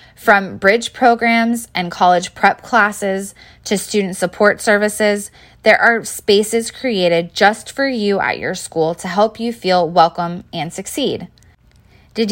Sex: female